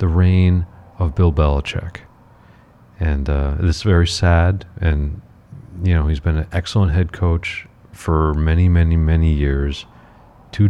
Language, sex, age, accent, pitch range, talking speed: English, male, 40-59, American, 80-100 Hz, 145 wpm